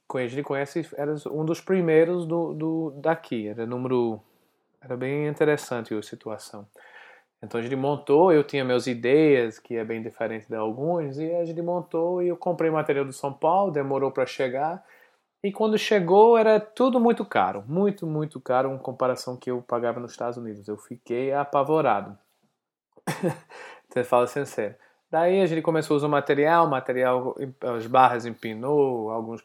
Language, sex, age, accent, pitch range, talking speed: Portuguese, male, 20-39, Brazilian, 120-160 Hz, 170 wpm